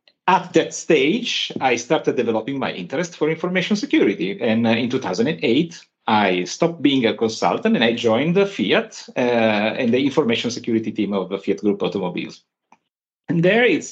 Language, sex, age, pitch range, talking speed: English, male, 40-59, 115-185 Hz, 165 wpm